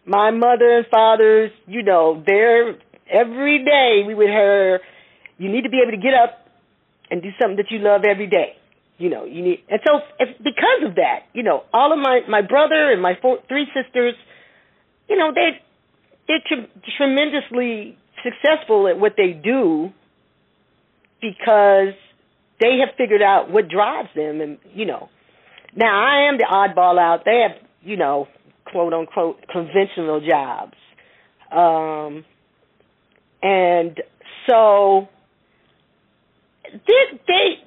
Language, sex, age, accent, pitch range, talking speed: English, female, 40-59, American, 195-290 Hz, 145 wpm